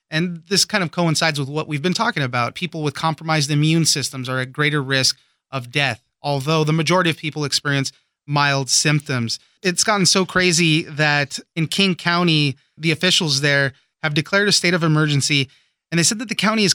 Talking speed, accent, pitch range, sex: 195 wpm, American, 145-170 Hz, male